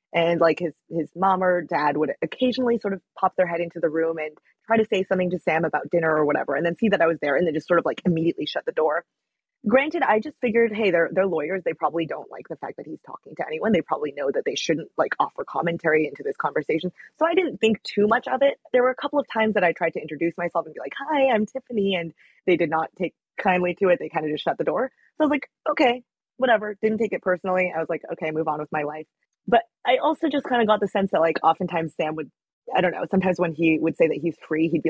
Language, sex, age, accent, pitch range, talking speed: English, female, 20-39, American, 160-235 Hz, 280 wpm